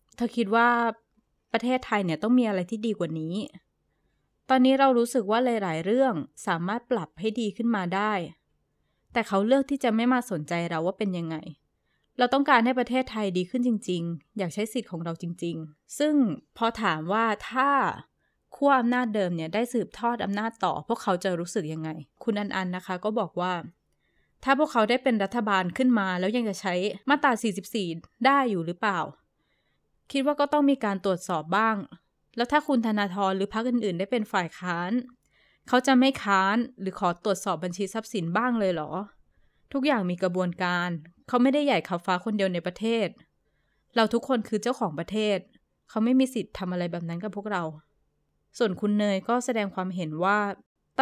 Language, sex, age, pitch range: Thai, female, 20-39, 185-245 Hz